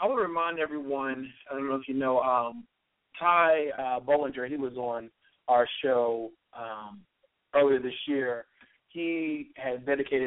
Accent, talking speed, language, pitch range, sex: American, 160 wpm, English, 120-135 Hz, male